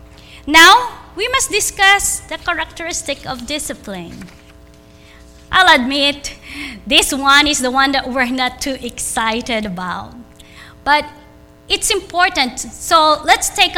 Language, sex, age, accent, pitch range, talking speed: English, female, 20-39, Filipino, 250-345 Hz, 120 wpm